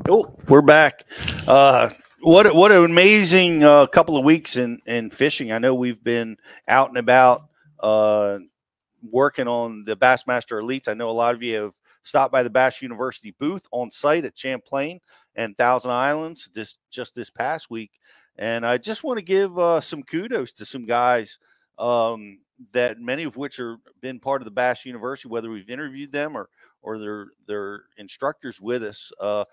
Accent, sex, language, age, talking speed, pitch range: American, male, English, 40-59, 180 wpm, 115-145 Hz